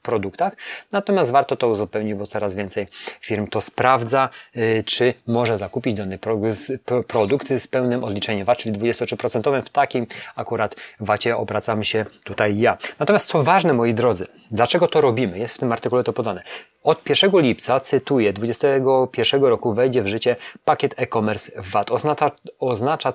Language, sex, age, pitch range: Polish, male, 30-49, 110-130 Hz